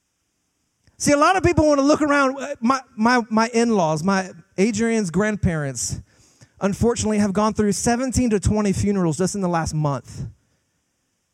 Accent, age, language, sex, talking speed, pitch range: American, 30-49, English, male, 155 wpm, 180-270 Hz